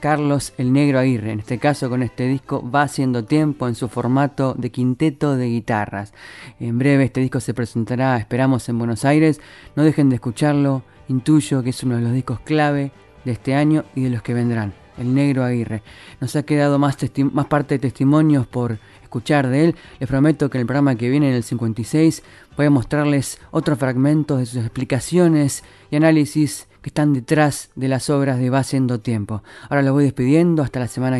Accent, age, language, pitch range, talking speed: Argentinian, 20-39, Spanish, 125-150 Hz, 200 wpm